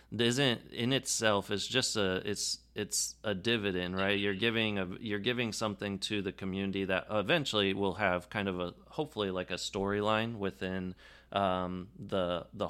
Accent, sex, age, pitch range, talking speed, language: American, male, 30-49, 95-115 Hz, 165 wpm, English